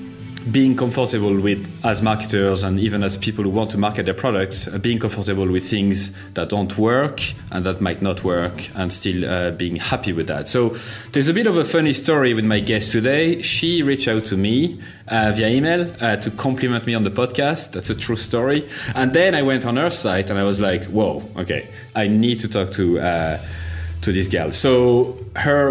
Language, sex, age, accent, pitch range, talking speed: English, male, 30-49, French, 95-120 Hz, 210 wpm